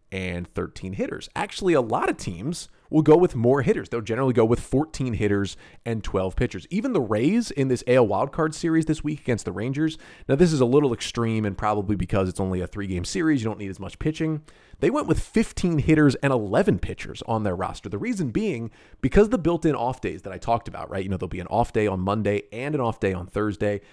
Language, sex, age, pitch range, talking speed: English, male, 30-49, 100-150 Hz, 235 wpm